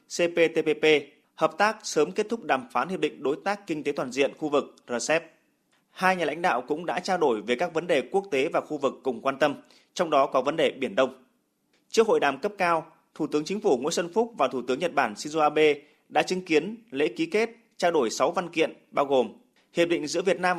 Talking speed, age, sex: 240 wpm, 20-39, male